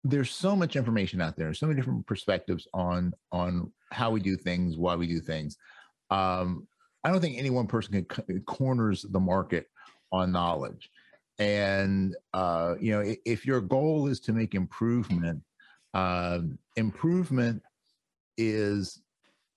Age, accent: 50-69, American